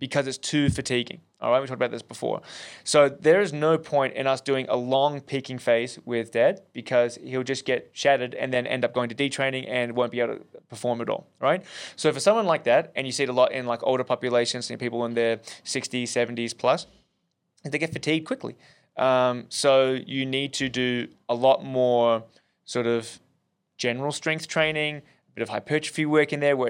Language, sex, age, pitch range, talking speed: English, male, 20-39, 125-145 Hz, 210 wpm